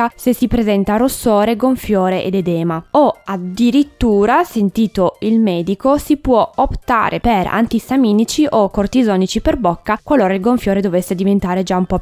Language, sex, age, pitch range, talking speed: Italian, female, 20-39, 190-255 Hz, 145 wpm